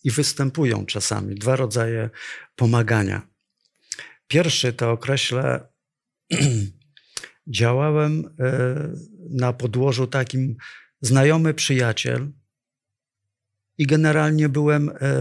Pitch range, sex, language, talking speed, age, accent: 120-170 Hz, male, Polish, 75 wpm, 50-69, native